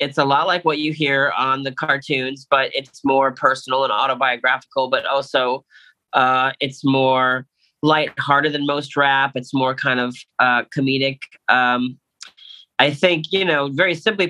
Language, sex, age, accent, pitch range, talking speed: English, male, 30-49, American, 120-140 Hz, 160 wpm